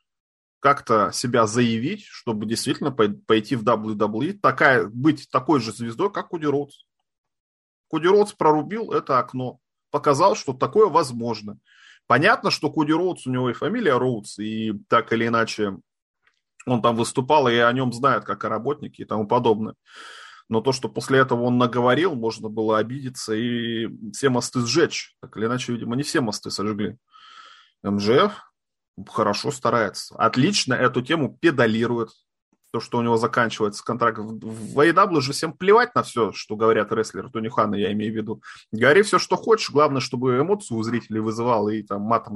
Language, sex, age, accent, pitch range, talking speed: Russian, male, 20-39, native, 110-140 Hz, 165 wpm